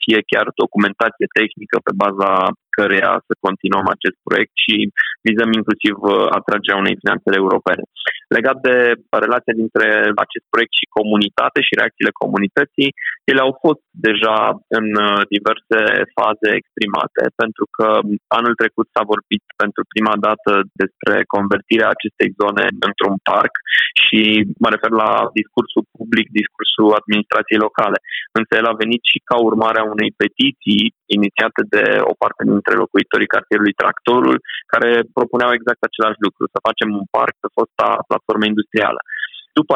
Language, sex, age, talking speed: Romanian, male, 20-39, 140 wpm